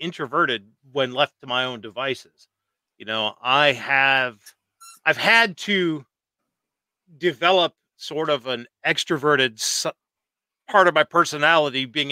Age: 40-59